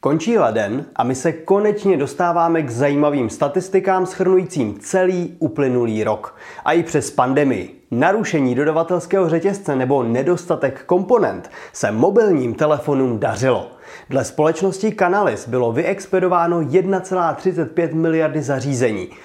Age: 30-49